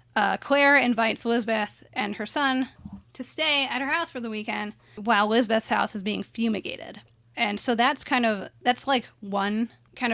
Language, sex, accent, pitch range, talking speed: English, female, American, 205-250 Hz, 180 wpm